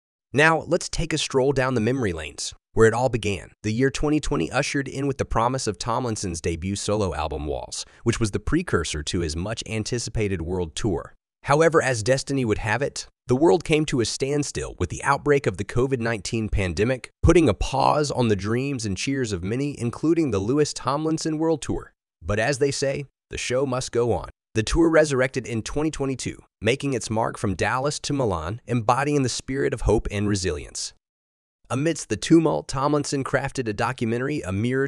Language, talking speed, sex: English, 185 wpm, male